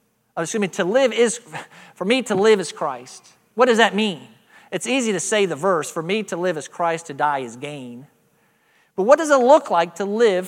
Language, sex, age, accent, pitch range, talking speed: English, male, 40-59, American, 160-235 Hz, 205 wpm